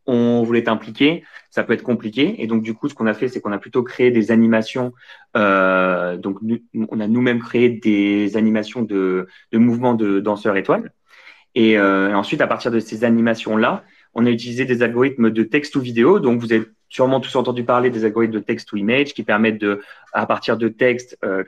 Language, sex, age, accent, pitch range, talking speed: French, male, 30-49, French, 110-130 Hz, 210 wpm